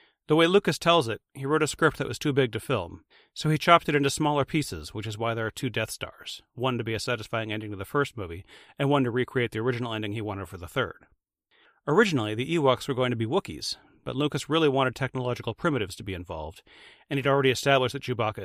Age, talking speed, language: 40-59, 245 wpm, English